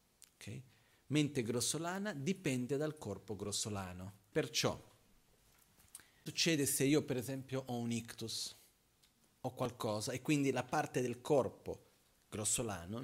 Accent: native